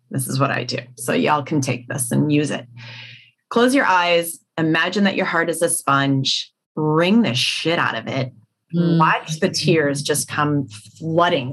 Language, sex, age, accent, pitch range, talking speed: English, female, 30-49, American, 140-170 Hz, 180 wpm